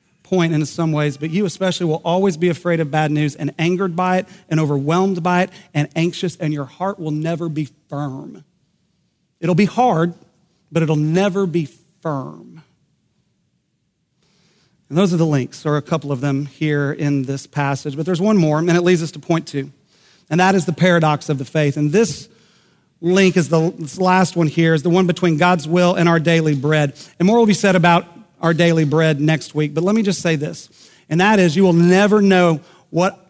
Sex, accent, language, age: male, American, English, 40-59